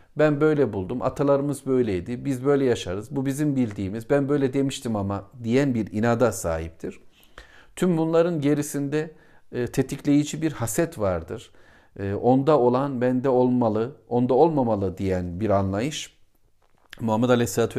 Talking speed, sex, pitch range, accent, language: 125 wpm, male, 110-140 Hz, native, Turkish